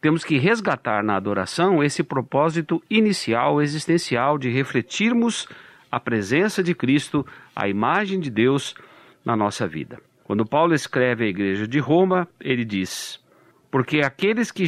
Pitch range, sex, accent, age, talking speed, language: 130-185 Hz, male, Brazilian, 50-69, 140 wpm, Portuguese